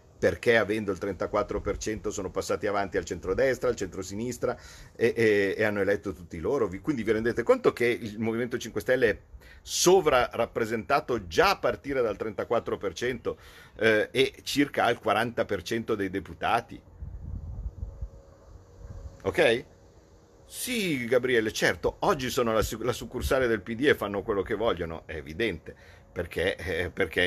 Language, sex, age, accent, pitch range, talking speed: Italian, male, 50-69, native, 90-115 Hz, 135 wpm